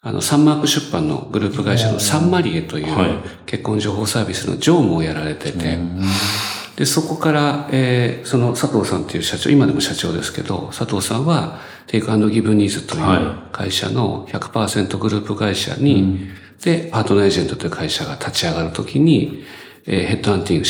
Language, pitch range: Japanese, 95-145 Hz